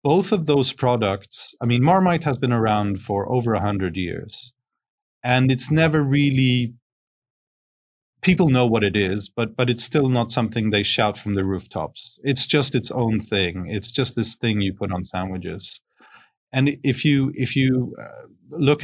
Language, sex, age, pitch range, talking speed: English, male, 30-49, 100-130 Hz, 170 wpm